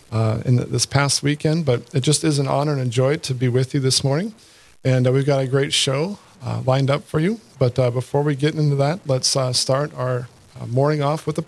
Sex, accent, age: male, American, 40-59